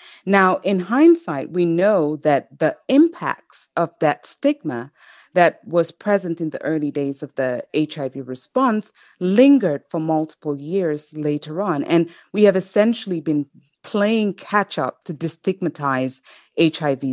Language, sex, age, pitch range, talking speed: English, female, 30-49, 145-200 Hz, 135 wpm